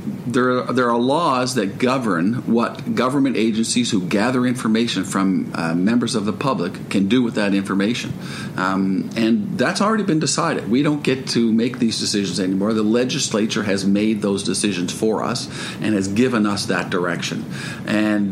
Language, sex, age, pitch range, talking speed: English, male, 50-69, 100-125 Hz, 170 wpm